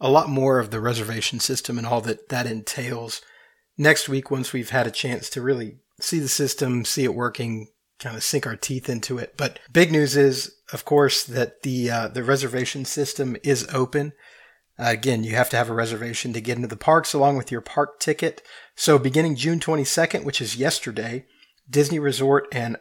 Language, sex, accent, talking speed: English, male, American, 200 wpm